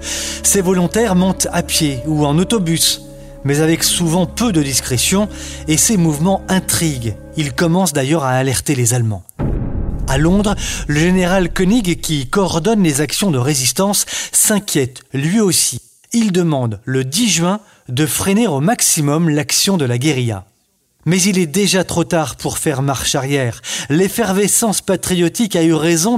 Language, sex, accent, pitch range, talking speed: French, male, French, 140-190 Hz, 155 wpm